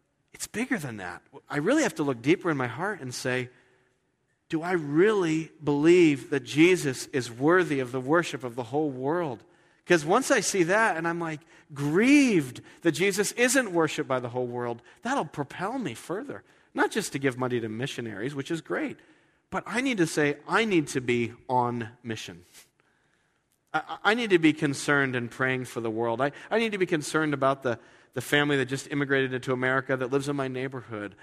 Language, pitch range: English, 120-160 Hz